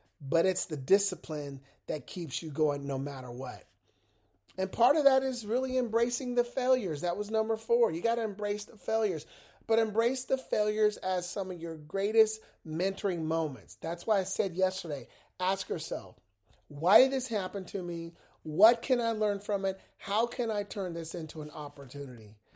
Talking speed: 180 wpm